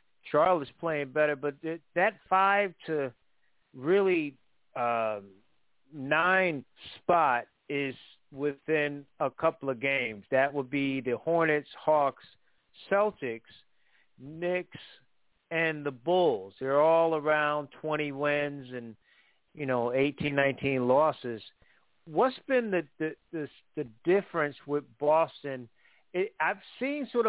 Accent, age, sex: American, 50-69, male